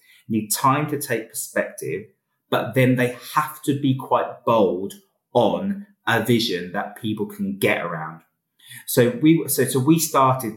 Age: 30-49